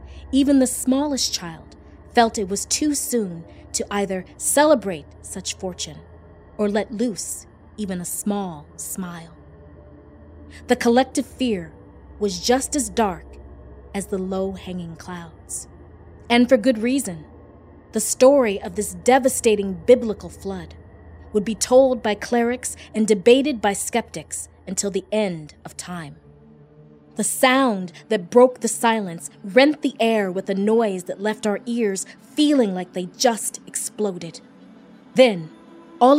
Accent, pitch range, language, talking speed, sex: American, 175-255 Hz, English, 135 wpm, female